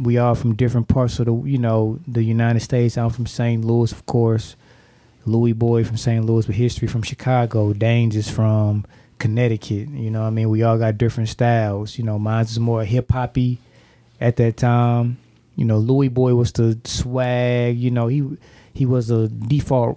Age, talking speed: 20-39, 190 wpm